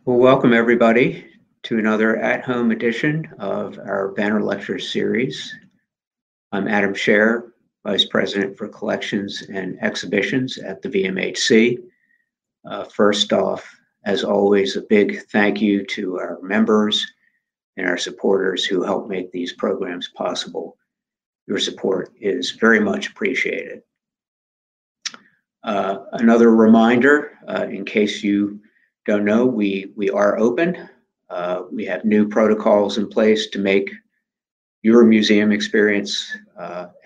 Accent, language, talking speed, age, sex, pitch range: American, English, 125 wpm, 50-69, male, 100-120 Hz